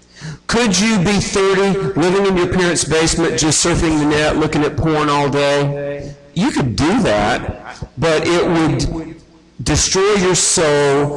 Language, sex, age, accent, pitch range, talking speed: English, male, 50-69, American, 125-160 Hz, 150 wpm